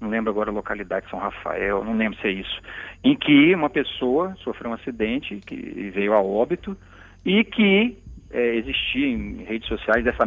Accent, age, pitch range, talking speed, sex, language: Brazilian, 40-59, 110-155 Hz, 185 wpm, male, Portuguese